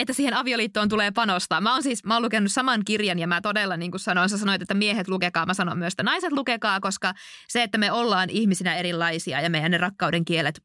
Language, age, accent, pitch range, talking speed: Finnish, 20-39, native, 180-225 Hz, 235 wpm